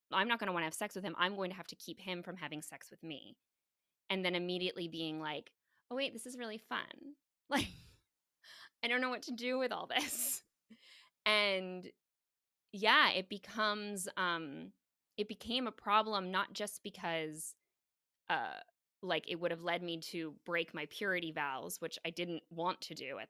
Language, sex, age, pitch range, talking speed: English, female, 20-39, 170-230 Hz, 190 wpm